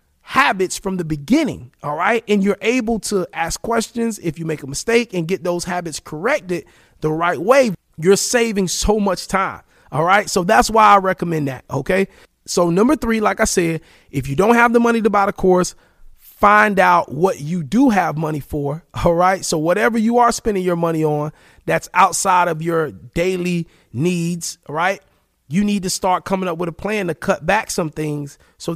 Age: 30-49